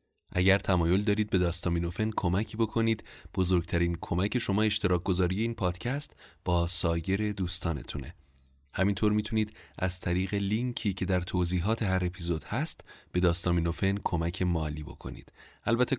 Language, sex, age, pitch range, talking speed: Persian, male, 30-49, 85-105 Hz, 130 wpm